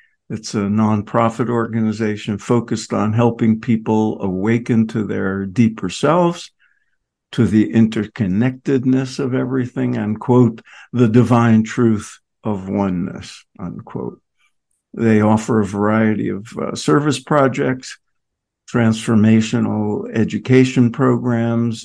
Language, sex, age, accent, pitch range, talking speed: English, male, 60-79, American, 110-130 Hz, 100 wpm